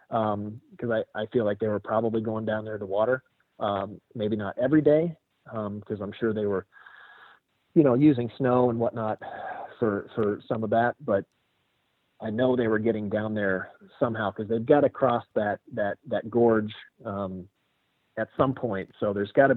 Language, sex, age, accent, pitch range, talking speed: English, male, 40-59, American, 105-130 Hz, 185 wpm